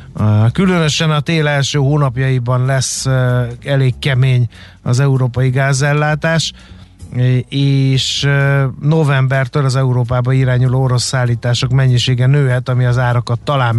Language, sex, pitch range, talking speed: Hungarian, male, 120-135 Hz, 105 wpm